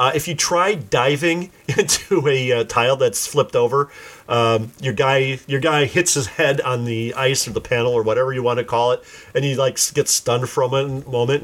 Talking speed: 215 wpm